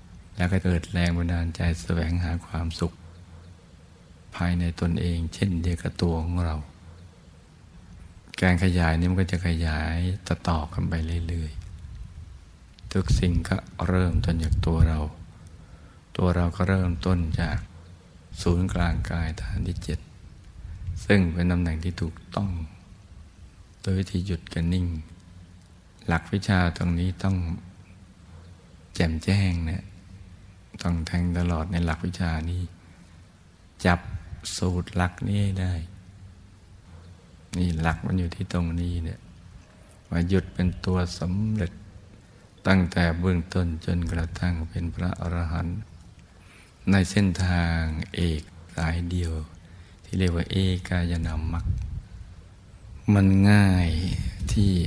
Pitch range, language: 85-95 Hz, Thai